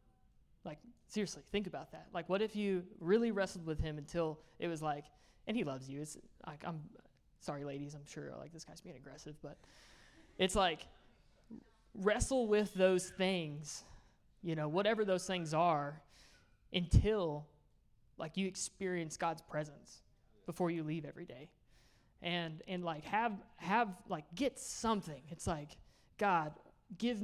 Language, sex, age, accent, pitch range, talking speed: English, male, 20-39, American, 155-190 Hz, 150 wpm